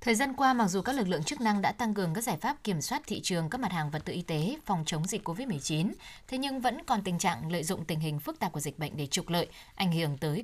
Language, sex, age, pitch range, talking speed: Vietnamese, female, 20-39, 170-215 Hz, 300 wpm